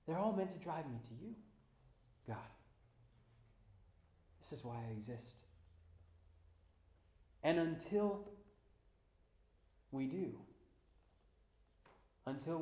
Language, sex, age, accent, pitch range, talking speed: English, male, 40-59, American, 100-135 Hz, 90 wpm